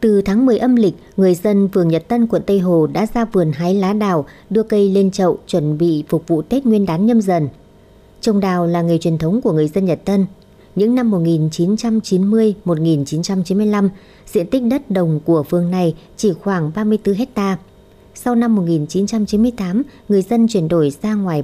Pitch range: 165-215 Hz